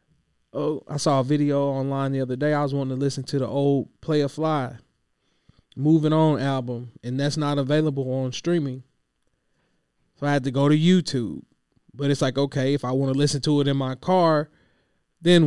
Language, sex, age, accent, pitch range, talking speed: English, male, 20-39, American, 120-140 Hz, 200 wpm